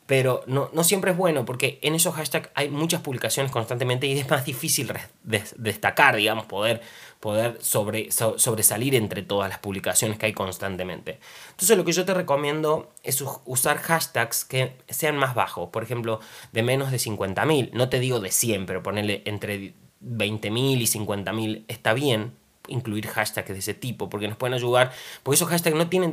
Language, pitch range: Spanish, 110-150 Hz